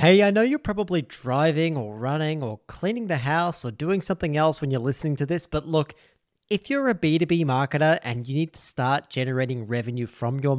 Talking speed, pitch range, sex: 210 wpm, 125-165 Hz, male